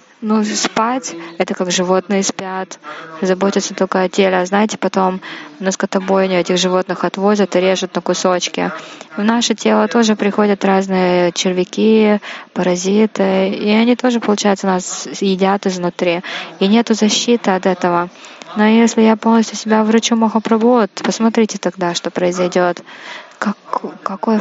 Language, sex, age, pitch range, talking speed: Russian, female, 20-39, 185-215 Hz, 135 wpm